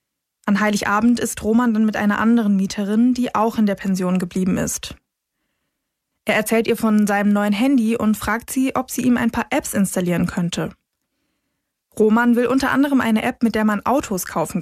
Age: 20-39